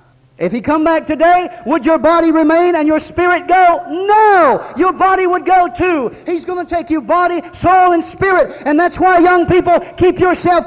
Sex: male